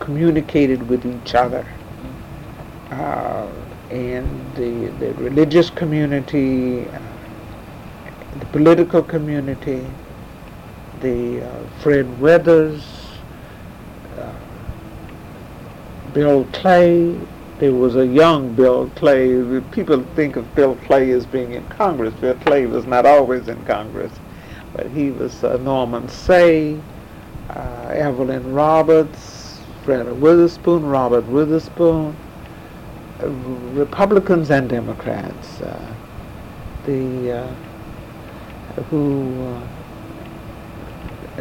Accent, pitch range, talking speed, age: American, 125-150 Hz, 90 wpm, 60-79